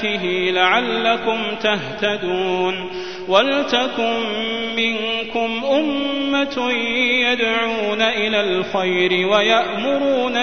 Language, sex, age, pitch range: Arabic, male, 30-49, 210-245 Hz